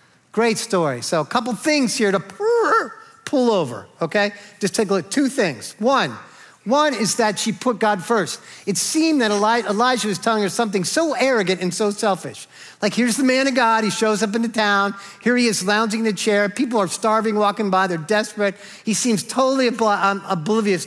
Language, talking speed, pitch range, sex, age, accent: English, 200 wpm, 200-275 Hz, male, 50-69, American